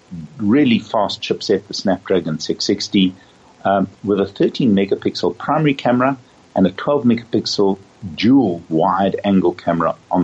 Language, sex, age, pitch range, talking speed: English, male, 50-69, 95-135 Hz, 105 wpm